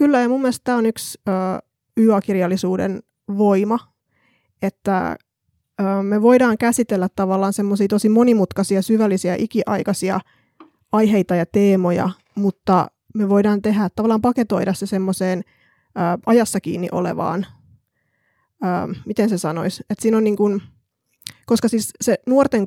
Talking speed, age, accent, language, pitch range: 125 wpm, 20-39, native, Finnish, 185-215 Hz